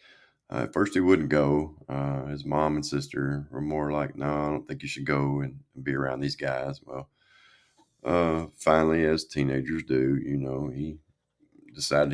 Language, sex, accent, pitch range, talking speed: English, male, American, 70-75 Hz, 180 wpm